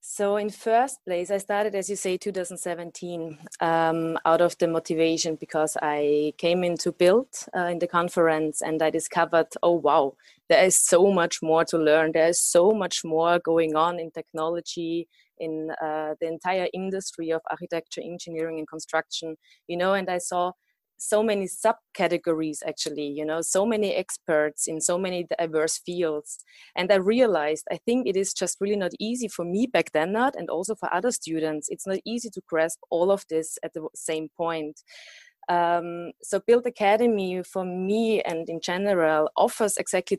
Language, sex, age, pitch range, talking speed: English, female, 20-39, 160-200 Hz, 175 wpm